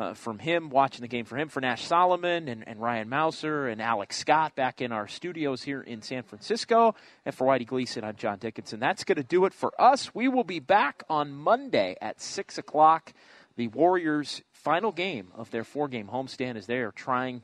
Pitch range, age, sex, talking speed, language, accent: 110-145 Hz, 30-49, male, 210 wpm, English, American